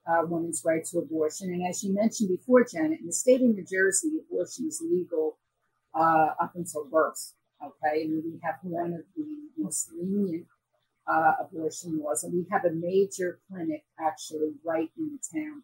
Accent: American